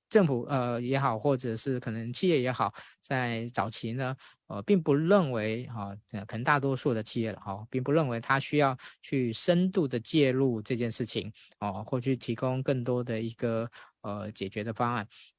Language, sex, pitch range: Chinese, male, 115-145 Hz